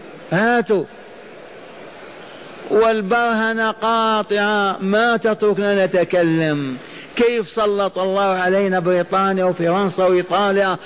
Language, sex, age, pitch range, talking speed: Arabic, male, 50-69, 190-230 Hz, 70 wpm